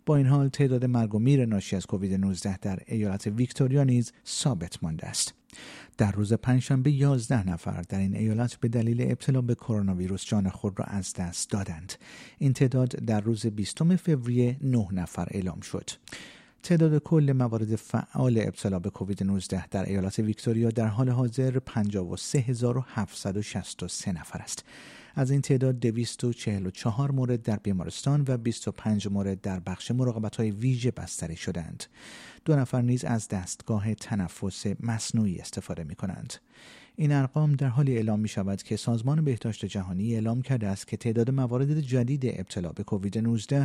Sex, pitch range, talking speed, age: male, 100-130 Hz, 155 wpm, 50-69